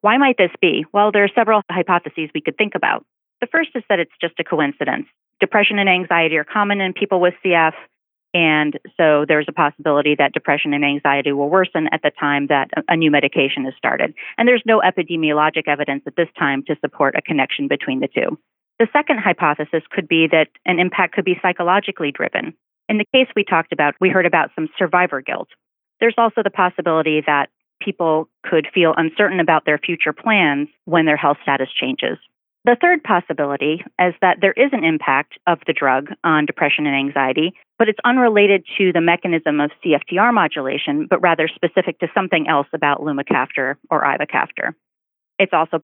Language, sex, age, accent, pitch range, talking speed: English, female, 30-49, American, 150-195 Hz, 190 wpm